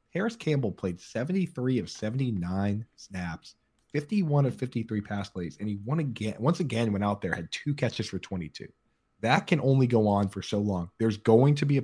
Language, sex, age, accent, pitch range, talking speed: English, male, 30-49, American, 100-130 Hz, 190 wpm